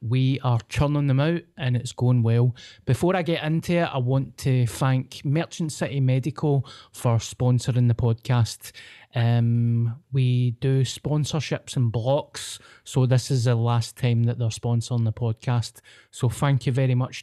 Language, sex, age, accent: English, male, 20-39, British